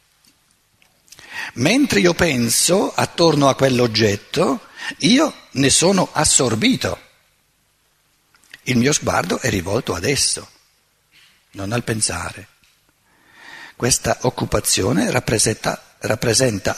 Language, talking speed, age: Italian, 85 wpm, 60-79